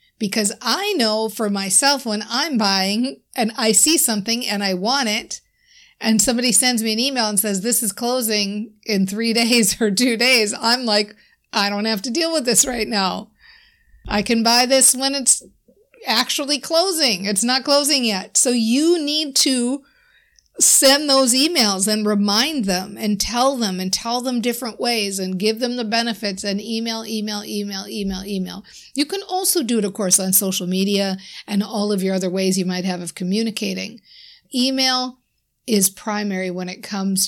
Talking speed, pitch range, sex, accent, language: 180 wpm, 195-250 Hz, female, American, English